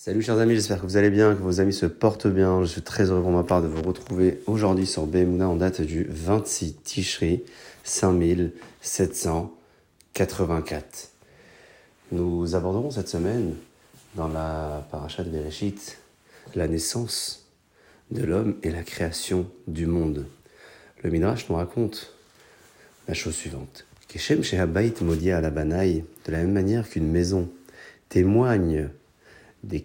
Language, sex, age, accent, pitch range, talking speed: French, male, 40-59, French, 80-100 Hz, 140 wpm